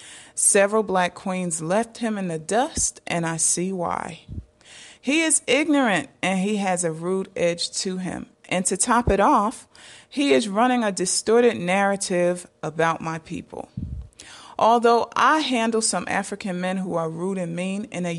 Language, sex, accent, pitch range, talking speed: English, female, American, 175-210 Hz, 165 wpm